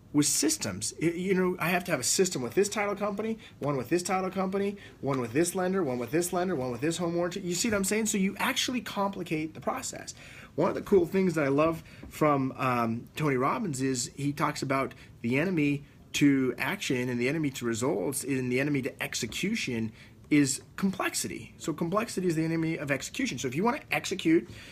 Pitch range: 135-195 Hz